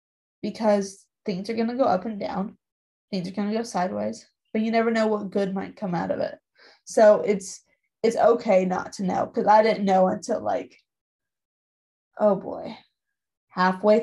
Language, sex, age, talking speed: English, female, 20-39, 180 wpm